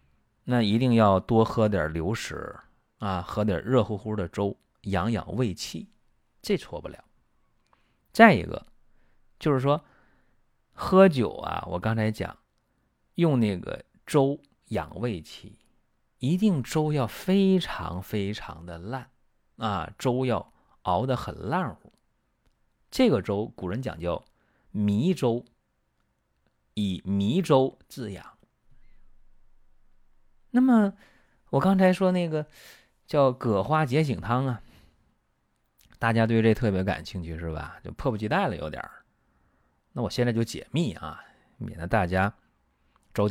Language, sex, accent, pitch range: Chinese, male, native, 95-135 Hz